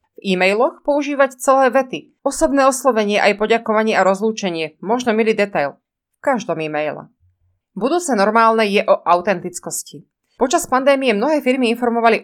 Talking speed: 130 wpm